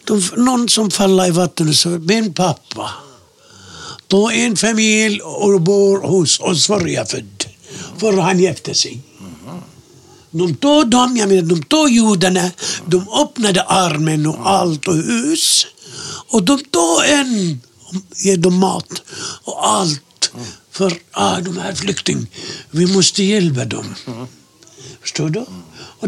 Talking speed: 120 wpm